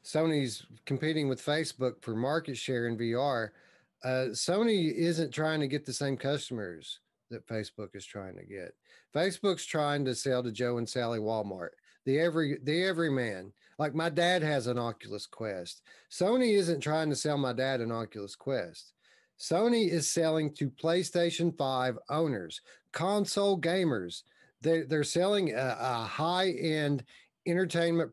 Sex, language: male, English